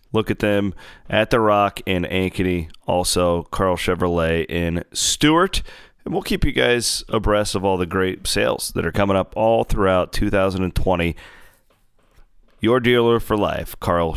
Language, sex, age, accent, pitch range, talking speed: English, male, 30-49, American, 95-115 Hz, 155 wpm